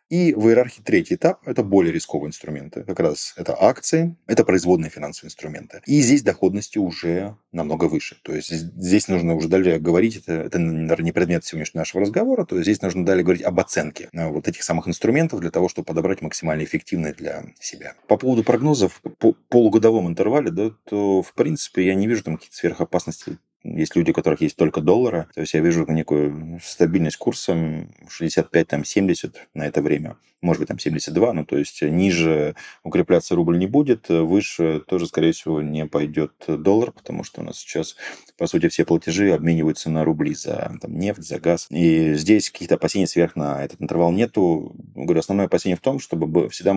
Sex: male